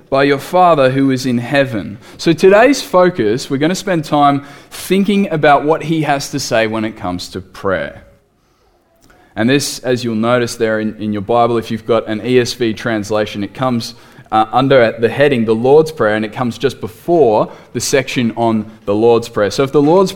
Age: 20-39